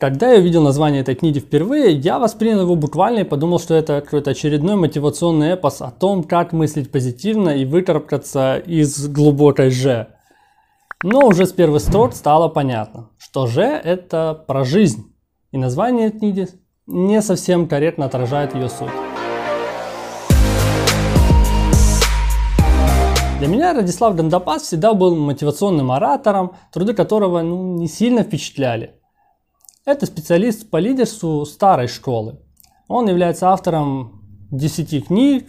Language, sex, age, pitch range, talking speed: Russian, male, 20-39, 140-190 Hz, 130 wpm